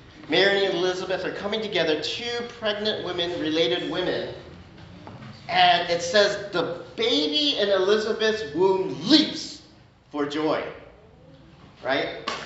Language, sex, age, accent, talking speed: English, male, 40-59, American, 110 wpm